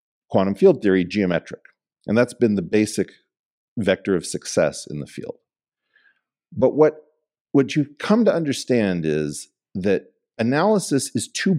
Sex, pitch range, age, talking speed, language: male, 90-140 Hz, 50-69, 140 wpm, English